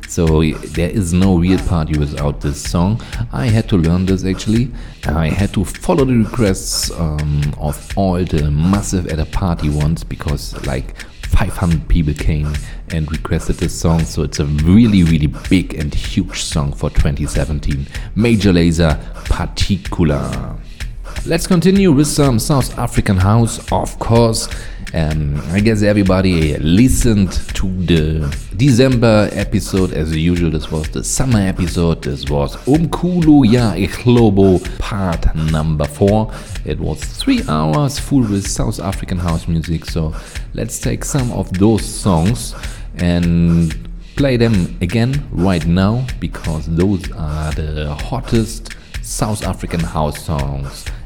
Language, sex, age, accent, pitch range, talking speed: German, male, 40-59, German, 80-105 Hz, 140 wpm